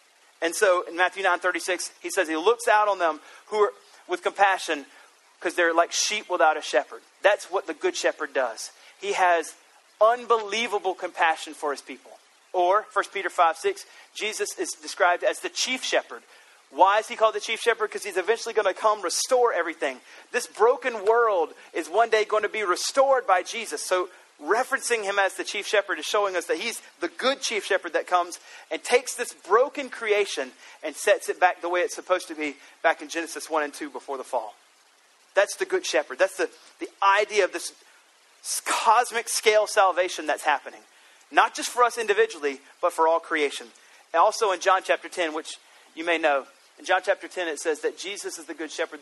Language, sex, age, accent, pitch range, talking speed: English, male, 30-49, American, 170-240 Hz, 200 wpm